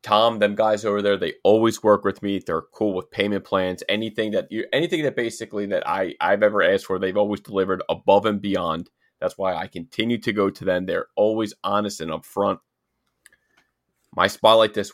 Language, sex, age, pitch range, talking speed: English, male, 30-49, 95-115 Hz, 195 wpm